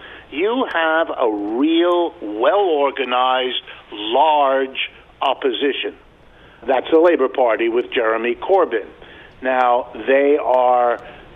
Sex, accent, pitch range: male, American, 140-205 Hz